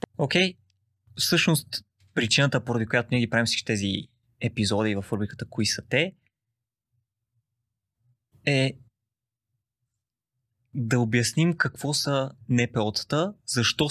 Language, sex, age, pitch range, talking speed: Bulgarian, male, 20-39, 110-130 Hz, 105 wpm